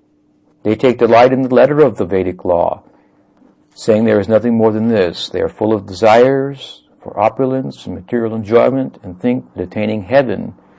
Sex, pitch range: male, 95-115 Hz